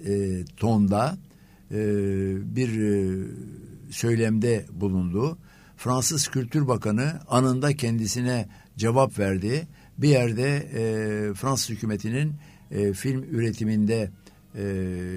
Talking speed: 90 wpm